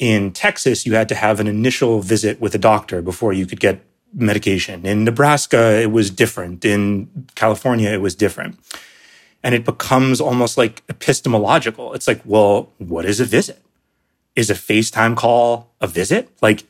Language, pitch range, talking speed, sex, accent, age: English, 105-130 Hz, 170 wpm, male, American, 30-49